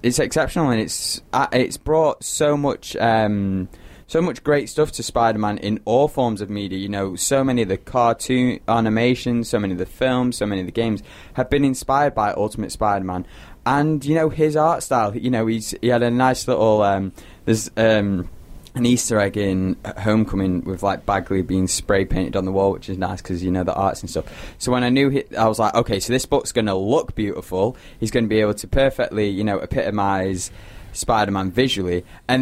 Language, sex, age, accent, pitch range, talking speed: English, male, 20-39, British, 95-120 Hz, 215 wpm